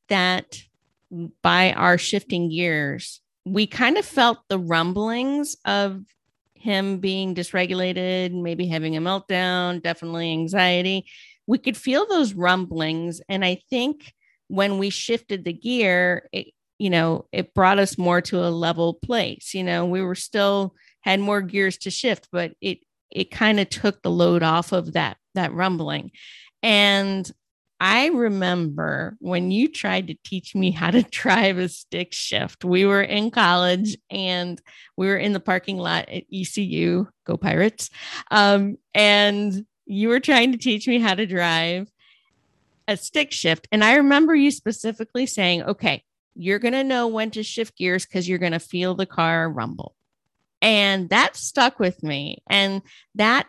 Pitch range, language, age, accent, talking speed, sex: 180-215 Hz, English, 40-59, American, 155 wpm, female